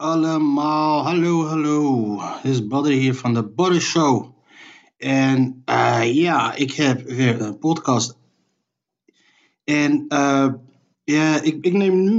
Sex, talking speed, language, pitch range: male, 130 wpm, Dutch, 130-160 Hz